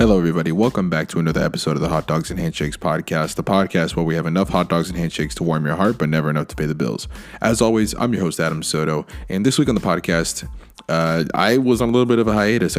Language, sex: English, male